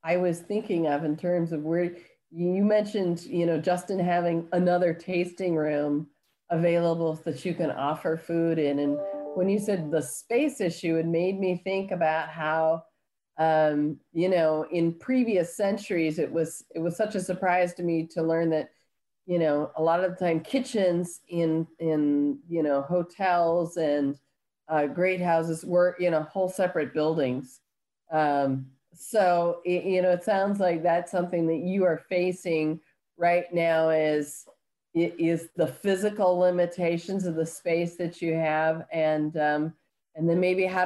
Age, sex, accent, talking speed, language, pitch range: 40-59, female, American, 160 wpm, English, 160-190 Hz